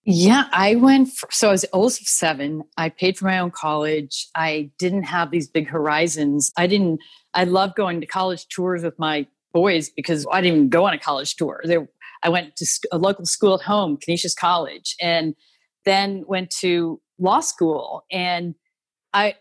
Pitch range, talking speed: 165-190 Hz, 190 wpm